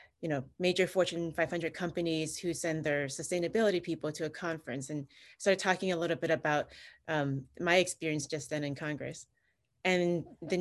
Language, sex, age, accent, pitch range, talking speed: English, female, 30-49, American, 145-185 Hz, 170 wpm